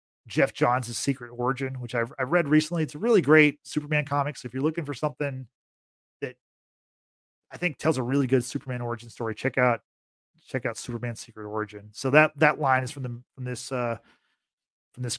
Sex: male